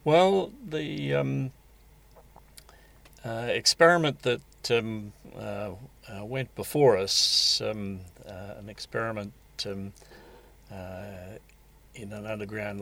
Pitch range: 95-115 Hz